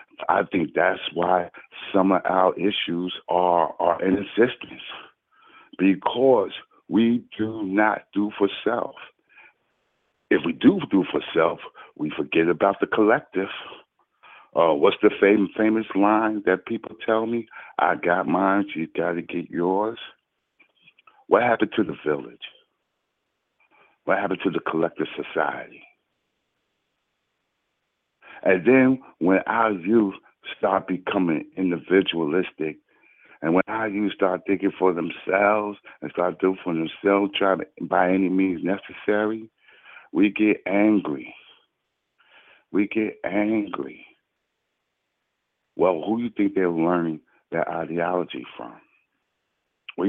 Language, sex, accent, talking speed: English, male, American, 125 wpm